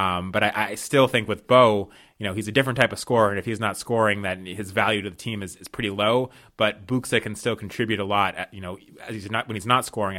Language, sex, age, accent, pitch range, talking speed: English, male, 20-39, American, 100-120 Hz, 285 wpm